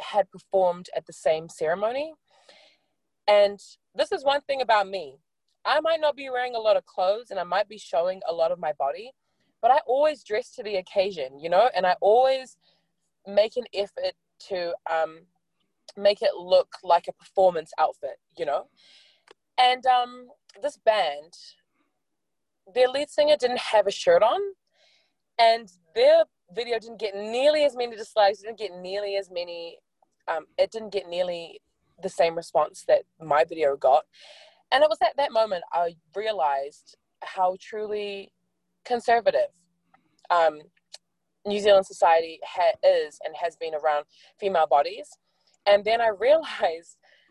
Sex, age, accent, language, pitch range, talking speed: female, 20-39, Australian, English, 170-250 Hz, 155 wpm